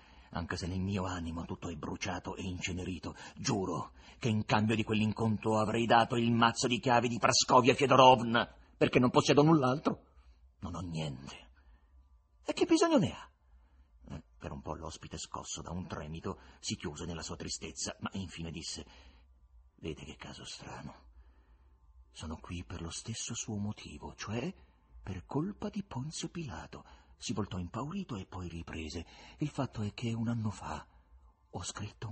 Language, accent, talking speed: Italian, native, 165 wpm